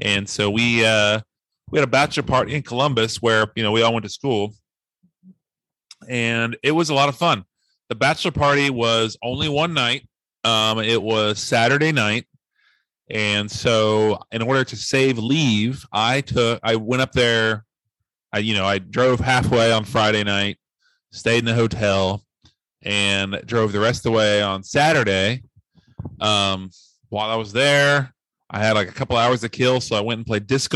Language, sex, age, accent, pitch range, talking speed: English, male, 30-49, American, 105-125 Hz, 180 wpm